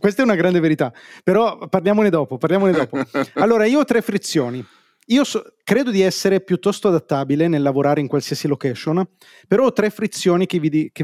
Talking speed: 190 wpm